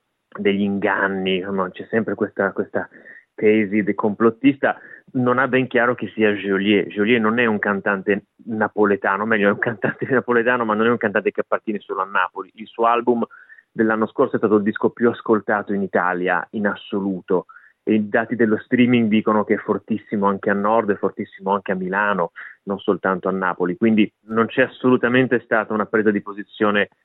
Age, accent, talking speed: 30-49, native, 185 wpm